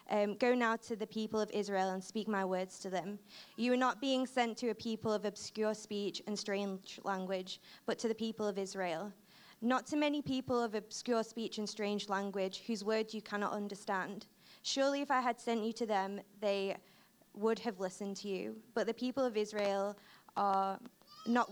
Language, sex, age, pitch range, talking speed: English, female, 20-39, 205-240 Hz, 195 wpm